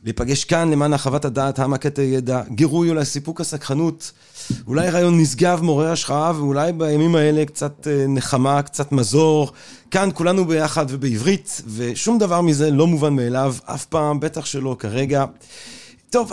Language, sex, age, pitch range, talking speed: Hebrew, male, 30-49, 125-160 Hz, 140 wpm